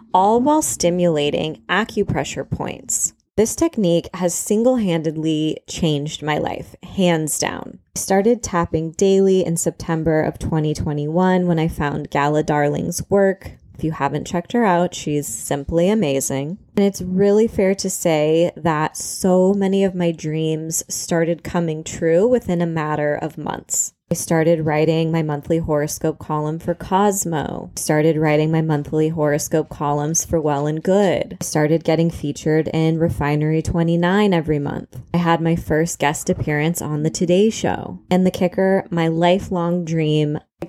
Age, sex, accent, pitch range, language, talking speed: 20-39, female, American, 150-185 Hz, English, 145 wpm